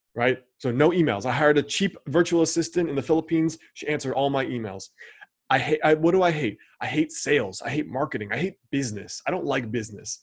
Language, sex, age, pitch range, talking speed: English, male, 20-39, 120-155 Hz, 215 wpm